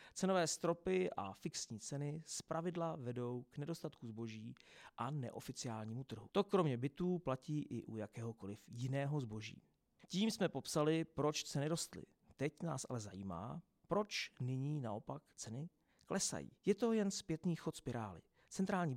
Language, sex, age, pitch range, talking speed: Czech, male, 40-59, 120-175 Hz, 140 wpm